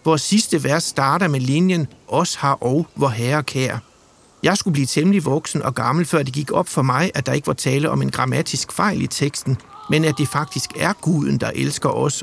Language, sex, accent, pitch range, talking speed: English, male, Danish, 130-165 Hz, 220 wpm